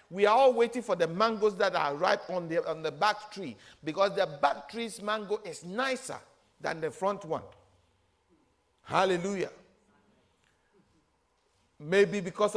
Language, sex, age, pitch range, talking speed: English, male, 50-69, 190-275 Hz, 145 wpm